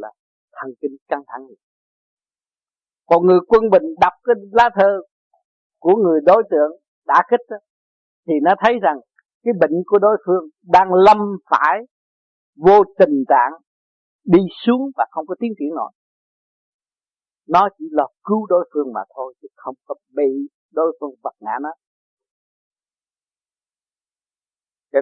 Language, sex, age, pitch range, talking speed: Vietnamese, male, 50-69, 140-200 Hz, 145 wpm